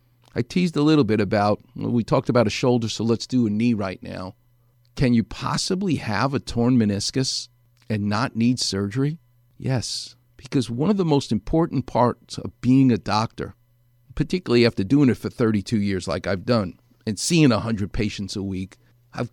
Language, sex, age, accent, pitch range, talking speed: English, male, 50-69, American, 105-140 Hz, 180 wpm